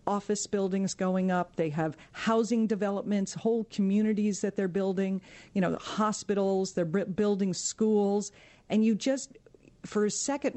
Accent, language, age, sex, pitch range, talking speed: American, English, 50-69, female, 180-215 Hz, 155 wpm